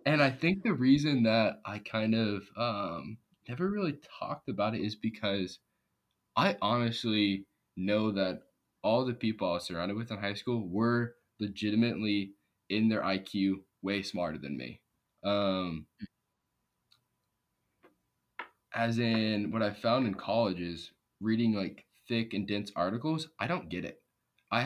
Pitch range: 95-115 Hz